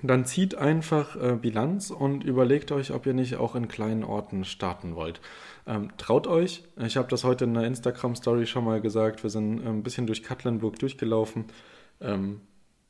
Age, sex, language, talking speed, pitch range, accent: 20-39, male, German, 170 wpm, 110-130 Hz, German